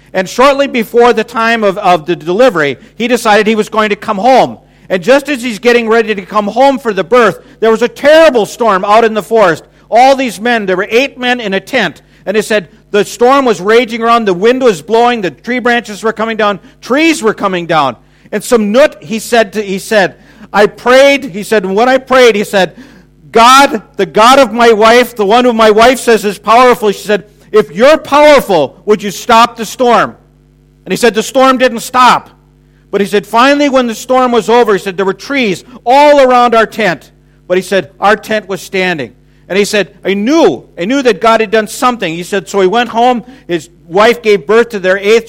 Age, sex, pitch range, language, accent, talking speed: 50-69, male, 200-245 Hz, English, American, 220 wpm